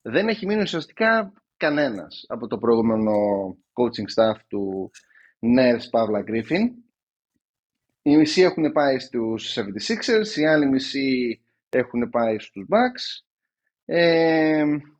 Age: 30-49